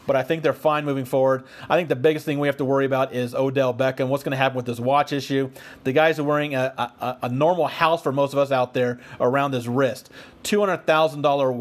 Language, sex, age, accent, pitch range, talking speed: English, male, 40-59, American, 130-150 Hz, 245 wpm